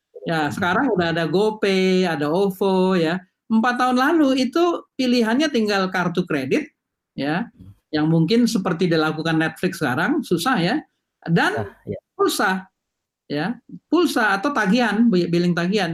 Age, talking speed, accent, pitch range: 40-59, 125 wpm, native, 160-220 Hz